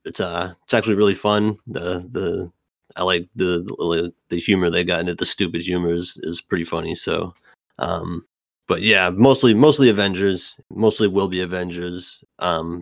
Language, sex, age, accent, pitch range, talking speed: English, male, 30-49, American, 90-110 Hz, 170 wpm